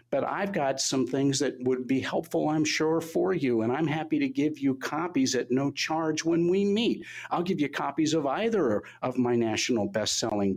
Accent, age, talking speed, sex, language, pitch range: American, 50-69, 210 wpm, male, English, 125-195 Hz